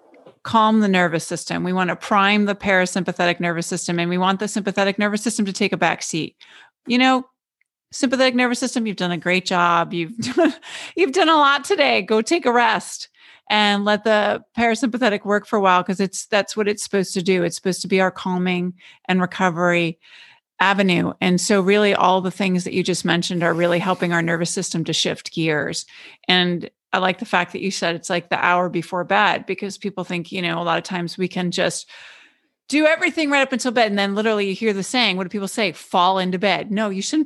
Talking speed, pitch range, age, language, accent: 220 wpm, 180-225 Hz, 40-59, English, American